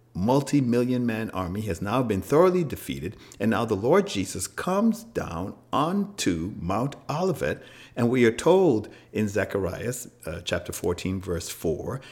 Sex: male